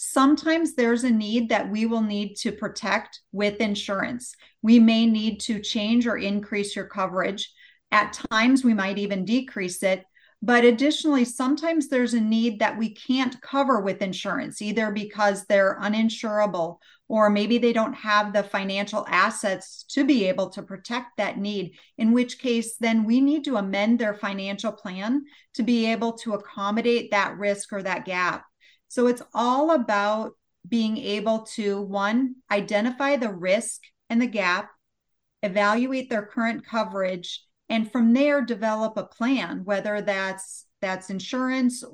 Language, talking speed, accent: English, 155 wpm, American